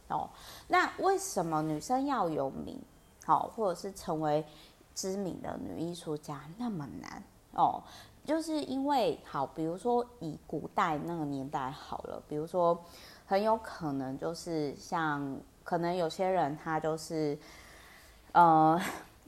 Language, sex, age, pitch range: Chinese, female, 20-39, 145-200 Hz